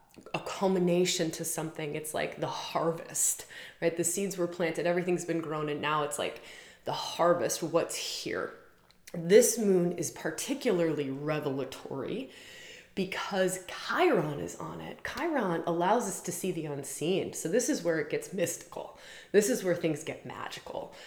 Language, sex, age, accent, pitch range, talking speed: English, female, 20-39, American, 160-205 Hz, 155 wpm